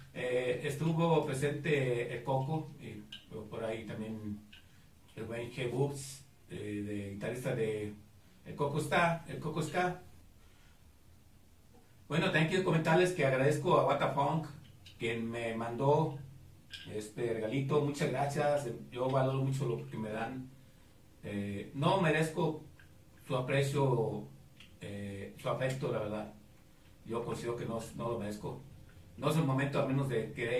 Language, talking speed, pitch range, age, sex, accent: Spanish, 135 wpm, 110-140 Hz, 40-59, male, Mexican